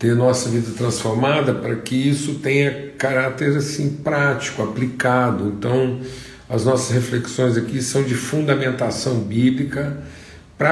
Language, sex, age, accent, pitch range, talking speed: Portuguese, male, 50-69, Brazilian, 115-140 Hz, 120 wpm